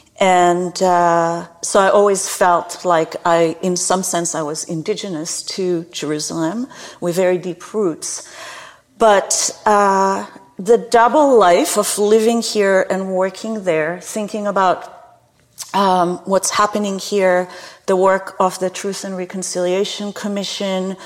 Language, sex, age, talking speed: English, female, 40-59, 130 wpm